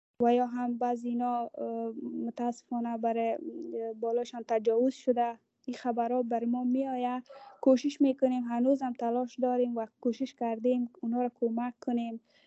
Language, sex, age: English, female, 20-39